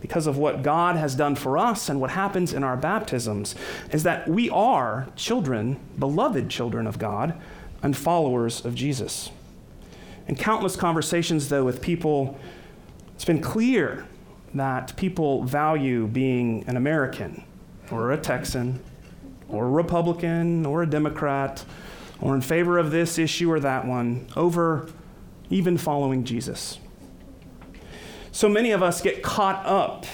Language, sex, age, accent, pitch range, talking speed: English, male, 30-49, American, 130-170 Hz, 140 wpm